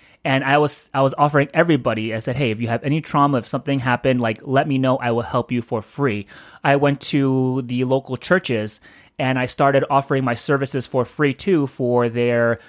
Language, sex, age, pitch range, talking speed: English, male, 30-49, 120-145 Hz, 215 wpm